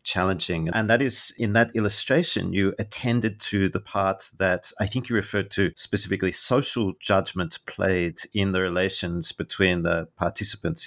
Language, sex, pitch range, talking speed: English, male, 95-115 Hz, 155 wpm